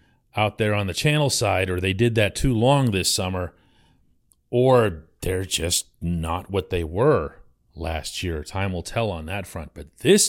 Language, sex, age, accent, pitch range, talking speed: English, male, 40-59, American, 85-120 Hz, 180 wpm